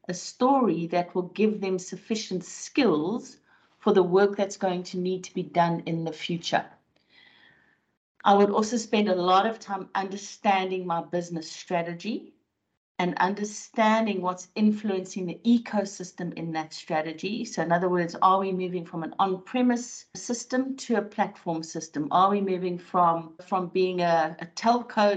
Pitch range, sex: 175-205 Hz, female